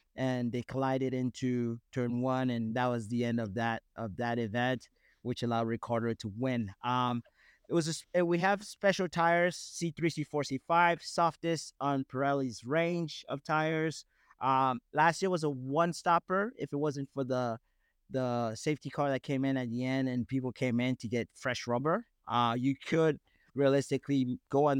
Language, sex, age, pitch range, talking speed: English, male, 30-49, 125-150 Hz, 175 wpm